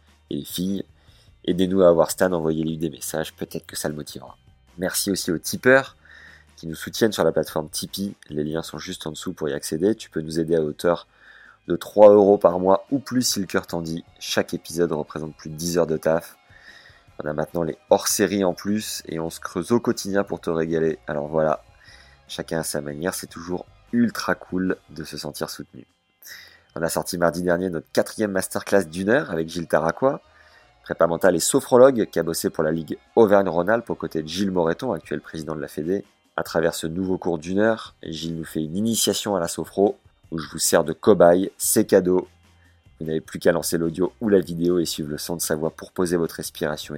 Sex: male